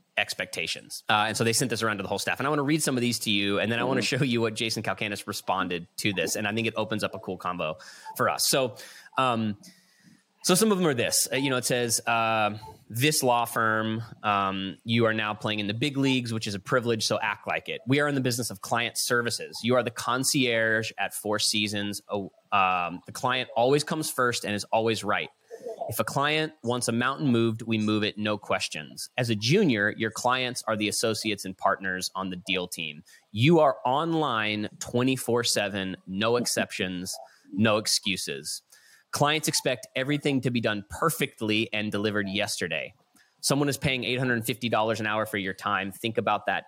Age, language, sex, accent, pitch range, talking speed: 20-39, English, male, American, 105-130 Hz, 205 wpm